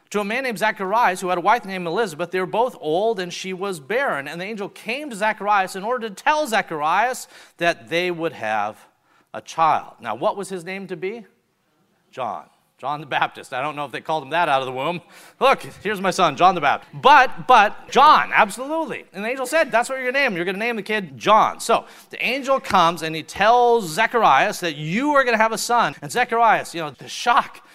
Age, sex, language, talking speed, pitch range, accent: 40-59, male, English, 235 wpm, 155-225 Hz, American